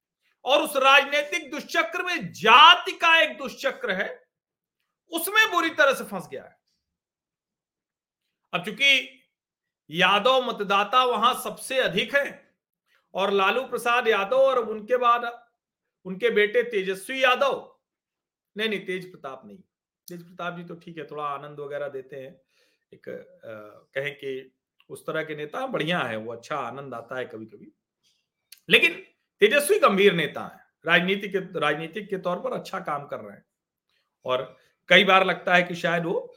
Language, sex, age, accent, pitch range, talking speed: Hindi, male, 40-59, native, 175-265 Hz, 150 wpm